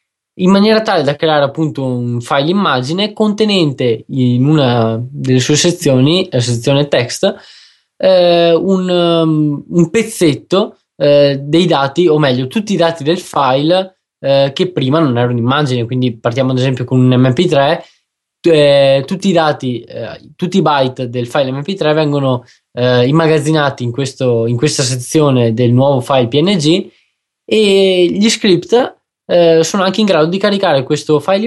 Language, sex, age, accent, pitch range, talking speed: Italian, male, 20-39, native, 130-175 Hz, 150 wpm